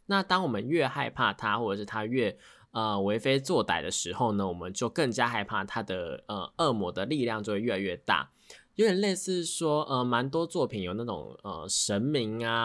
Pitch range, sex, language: 100-135 Hz, male, Chinese